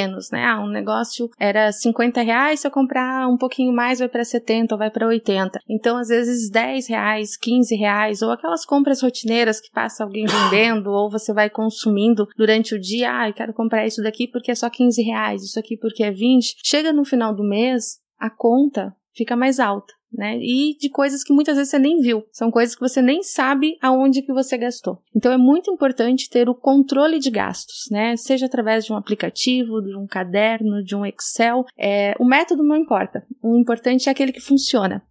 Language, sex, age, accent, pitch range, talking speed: Portuguese, female, 20-39, Brazilian, 220-265 Hz, 205 wpm